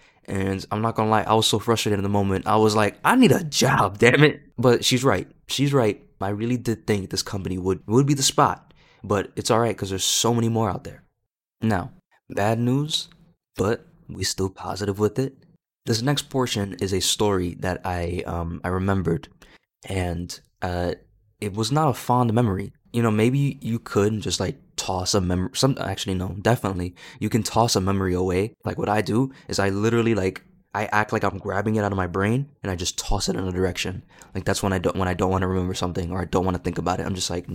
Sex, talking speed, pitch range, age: male, 235 wpm, 95-120 Hz, 20-39